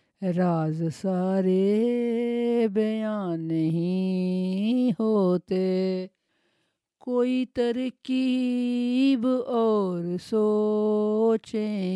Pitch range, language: 185-225 Hz, Urdu